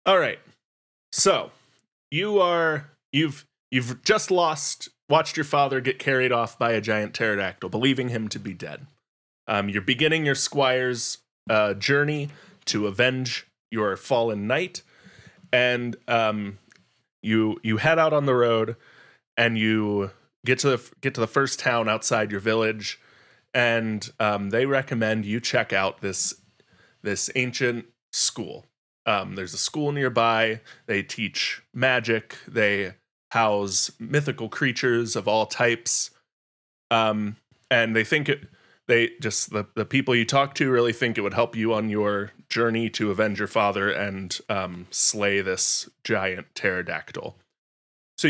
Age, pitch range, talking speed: 20-39, 110-135 Hz, 145 wpm